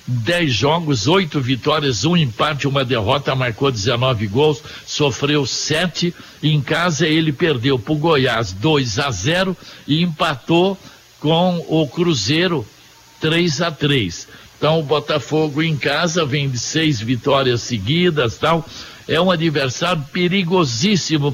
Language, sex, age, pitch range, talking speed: Portuguese, male, 60-79, 135-165 Hz, 135 wpm